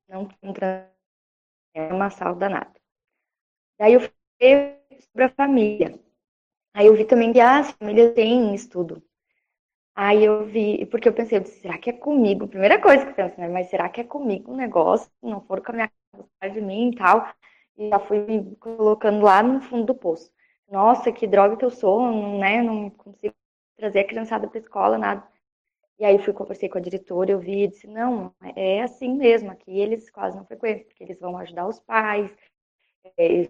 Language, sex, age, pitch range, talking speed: Portuguese, female, 20-39, 195-245 Hz, 195 wpm